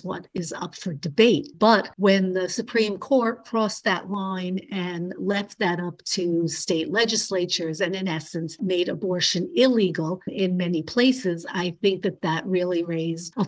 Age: 50-69